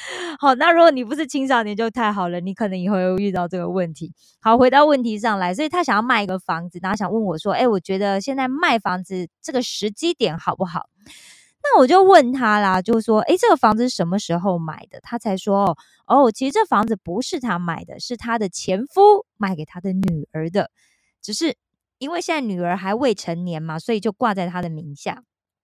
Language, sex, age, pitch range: Korean, female, 20-39, 185-285 Hz